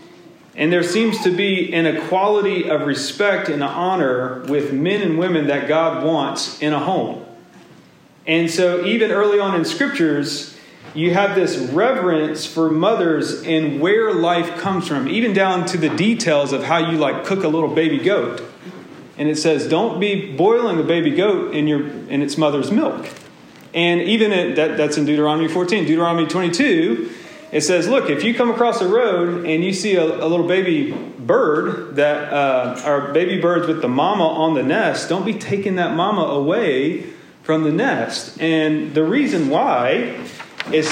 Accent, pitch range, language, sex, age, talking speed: American, 155-195 Hz, English, male, 40-59, 175 wpm